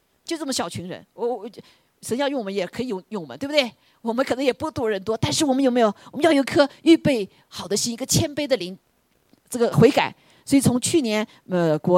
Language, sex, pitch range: Chinese, female, 195-280 Hz